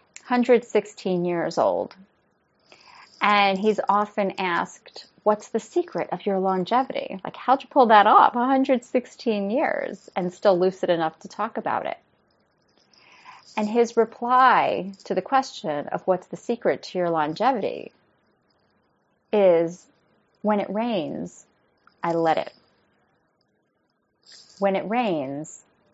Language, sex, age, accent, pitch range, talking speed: English, female, 30-49, American, 185-230 Hz, 120 wpm